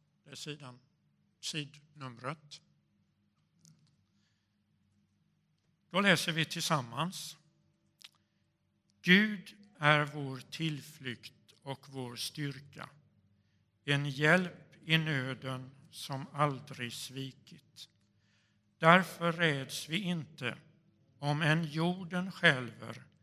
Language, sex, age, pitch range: Swedish, male, 60-79, 130-160 Hz